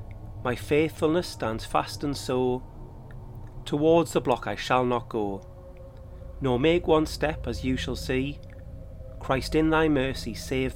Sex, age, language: male, 30-49, English